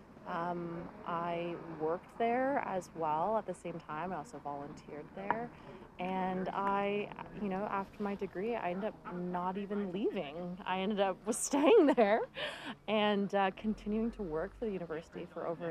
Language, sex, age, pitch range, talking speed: English, female, 30-49, 170-215 Hz, 160 wpm